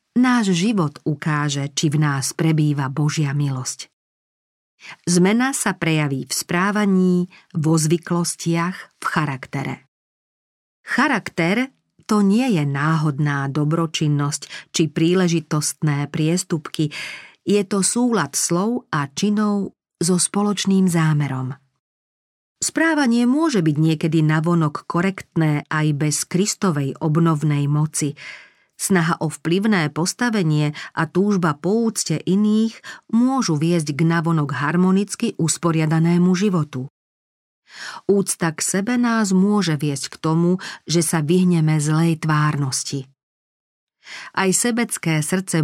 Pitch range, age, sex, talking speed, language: 150-190 Hz, 40-59, female, 105 wpm, Slovak